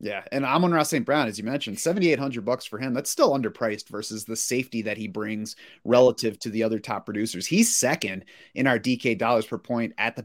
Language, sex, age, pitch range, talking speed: English, male, 30-49, 115-135 Hz, 230 wpm